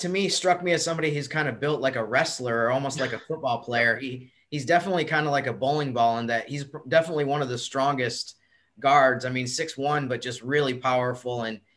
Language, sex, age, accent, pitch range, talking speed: English, male, 30-49, American, 125-150 Hz, 235 wpm